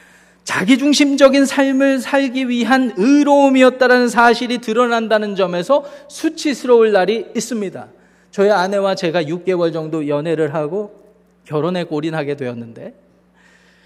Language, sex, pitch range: Korean, male, 150-225 Hz